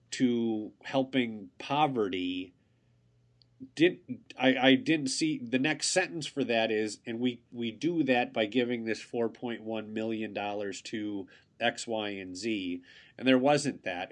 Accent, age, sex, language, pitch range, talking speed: American, 30-49, male, English, 105-130 Hz, 145 wpm